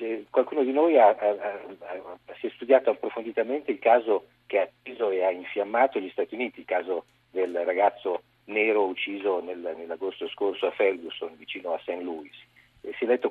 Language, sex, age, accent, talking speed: Italian, male, 50-69, native, 170 wpm